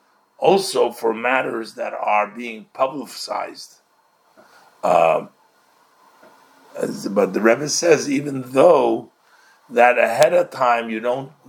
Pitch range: 105-130 Hz